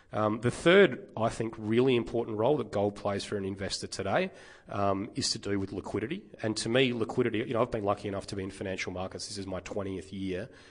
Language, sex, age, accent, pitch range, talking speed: English, male, 30-49, Australian, 95-115 Hz, 230 wpm